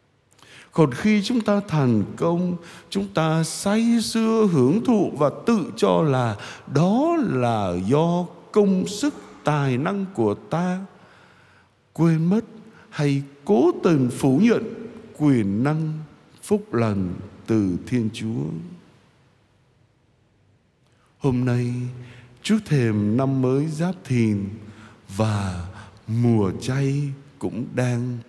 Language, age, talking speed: Vietnamese, 60-79, 110 wpm